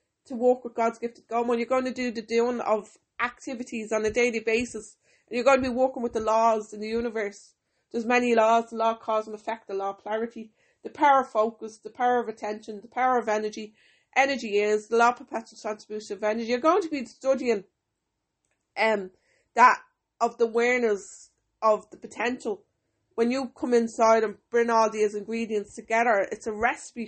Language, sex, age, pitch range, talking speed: English, female, 30-49, 220-250 Hz, 205 wpm